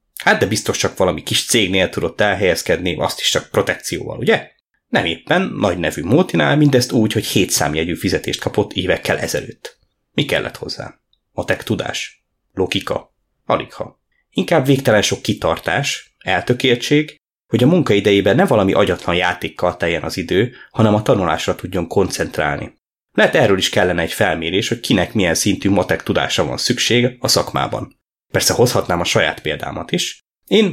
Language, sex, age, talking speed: Hungarian, male, 20-39, 150 wpm